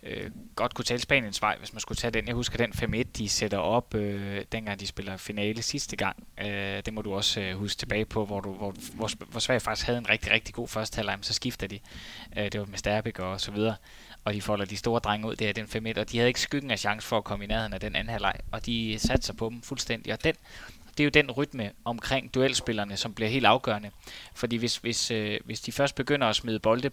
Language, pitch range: Danish, 105-125 Hz